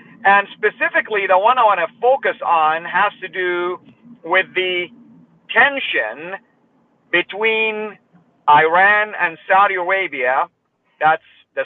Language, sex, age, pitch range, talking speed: English, male, 50-69, 155-210 Hz, 115 wpm